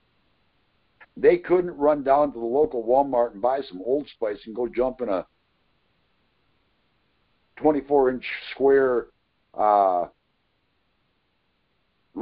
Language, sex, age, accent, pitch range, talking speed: English, male, 60-79, American, 125-150 Hz, 105 wpm